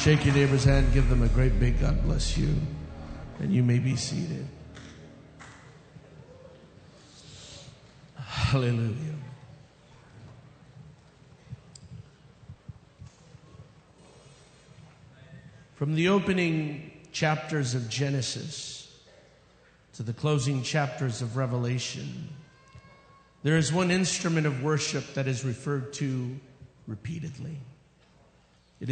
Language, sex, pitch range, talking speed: English, male, 135-160 Hz, 85 wpm